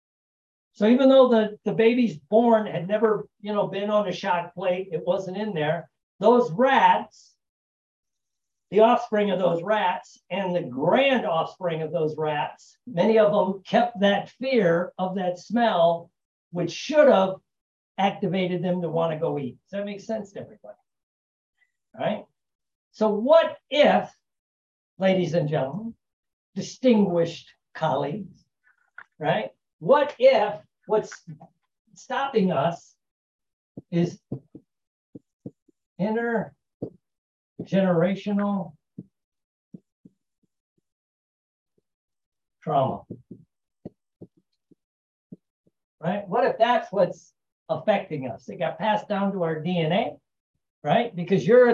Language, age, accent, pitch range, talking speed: English, 50-69, American, 170-230 Hz, 110 wpm